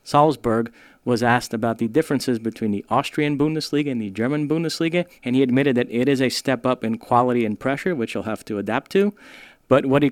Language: English